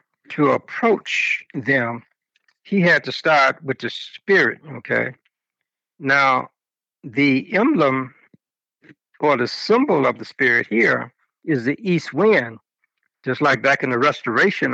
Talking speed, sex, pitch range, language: 125 wpm, male, 130-170 Hz, English